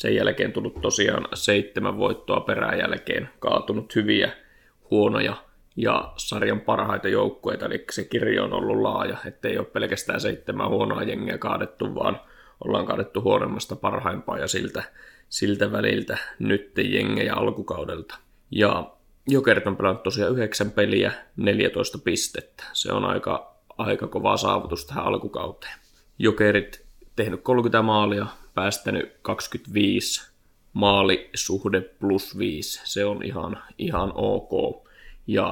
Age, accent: 20-39, native